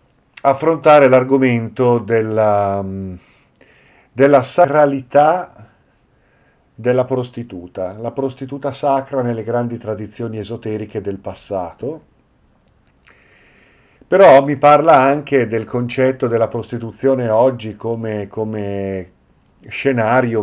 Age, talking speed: 50-69, 80 wpm